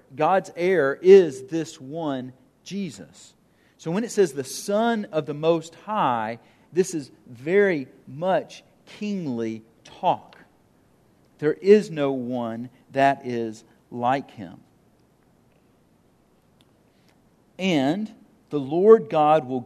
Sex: male